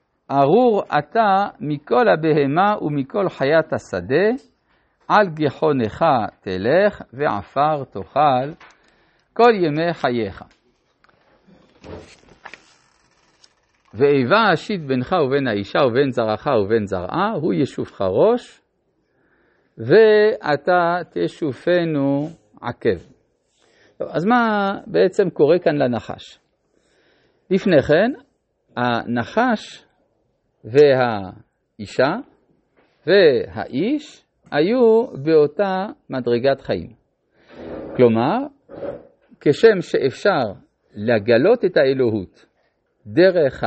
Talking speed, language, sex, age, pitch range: 70 wpm, Hebrew, male, 50-69, 130-210 Hz